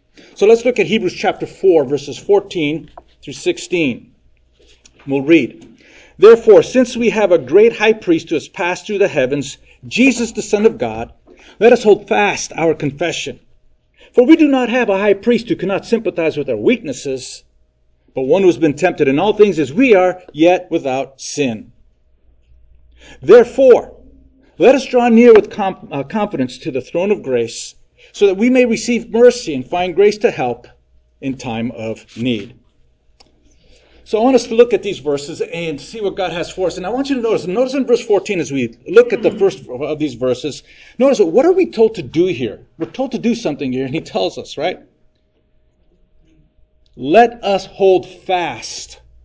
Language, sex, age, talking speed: English, male, 50-69, 190 wpm